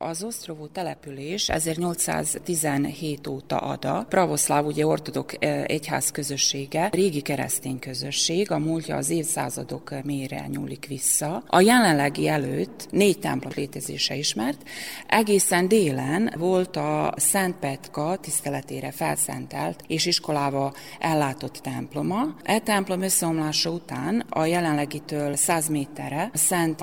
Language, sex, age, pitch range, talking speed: Hungarian, female, 30-49, 140-180 Hz, 115 wpm